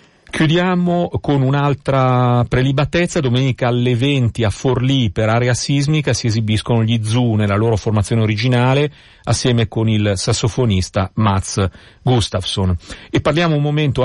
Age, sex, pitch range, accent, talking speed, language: 40-59, male, 105-130 Hz, native, 130 wpm, Italian